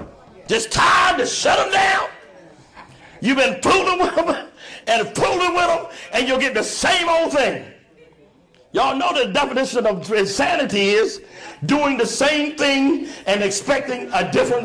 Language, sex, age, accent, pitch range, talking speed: English, male, 50-69, American, 200-325 Hz, 150 wpm